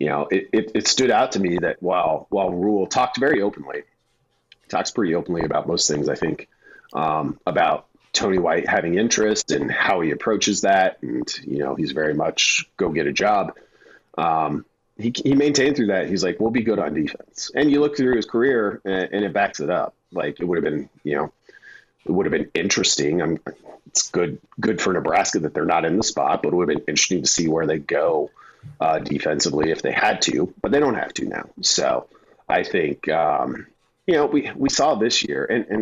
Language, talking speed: English, 220 wpm